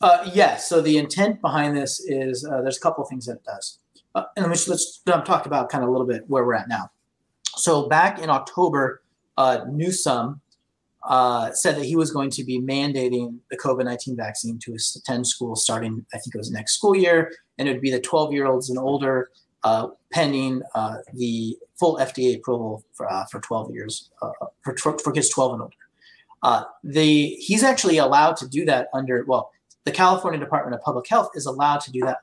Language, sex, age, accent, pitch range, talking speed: English, male, 30-49, American, 125-155 Hz, 210 wpm